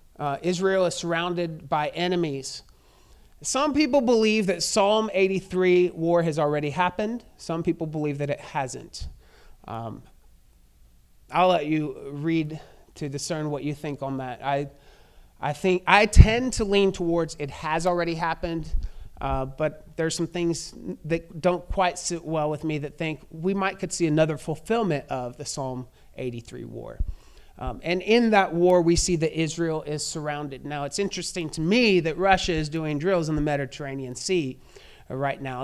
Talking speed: 165 wpm